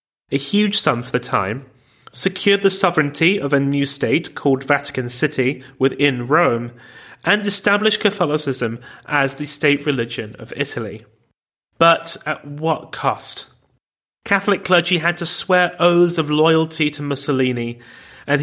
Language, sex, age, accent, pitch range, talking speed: English, male, 30-49, British, 135-180 Hz, 135 wpm